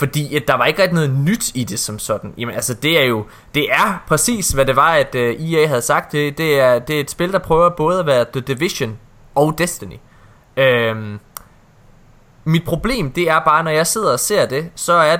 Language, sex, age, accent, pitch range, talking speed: Danish, male, 20-39, native, 125-165 Hz, 225 wpm